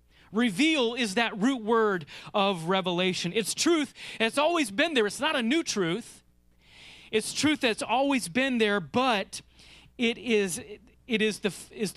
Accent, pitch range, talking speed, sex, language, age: American, 190-250 Hz, 150 wpm, male, English, 30-49